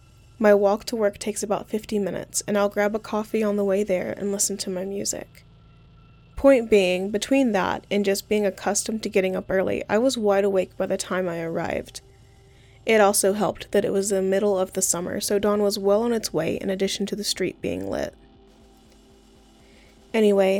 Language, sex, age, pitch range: English, female, 10-29, 185-215 Hz